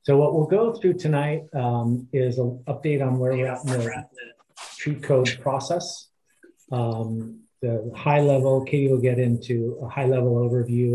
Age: 40-59